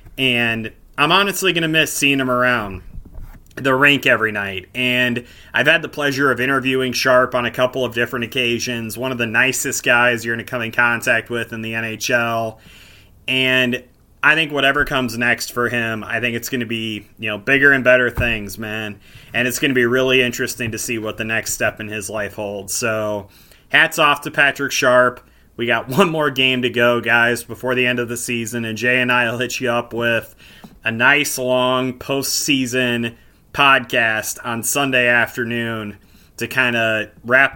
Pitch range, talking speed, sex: 110-130 Hz, 195 wpm, male